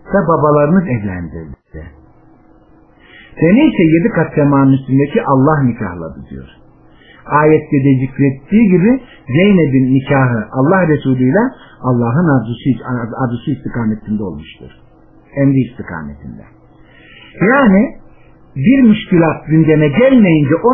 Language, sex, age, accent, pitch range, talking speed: Turkish, male, 50-69, native, 130-195 Hz, 95 wpm